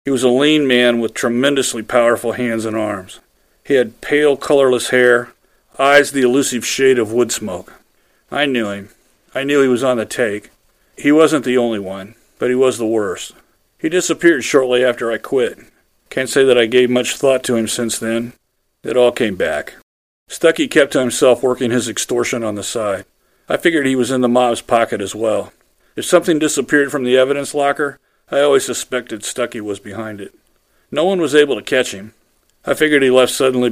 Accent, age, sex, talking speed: American, 40-59, male, 195 wpm